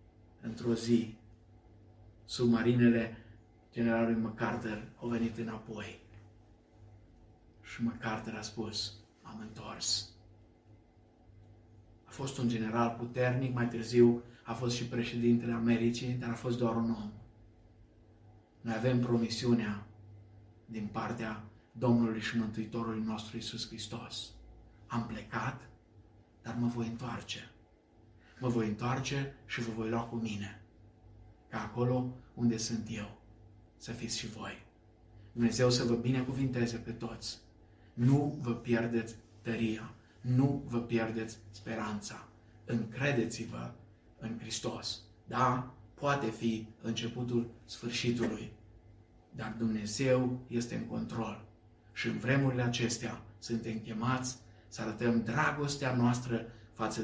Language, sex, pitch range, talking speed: Romanian, male, 110-120 Hz, 110 wpm